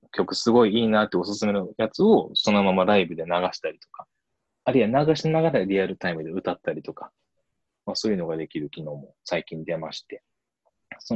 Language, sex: Japanese, male